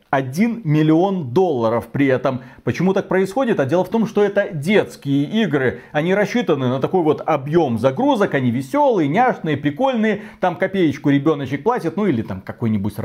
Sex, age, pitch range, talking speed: male, 40-59, 140-205 Hz, 160 wpm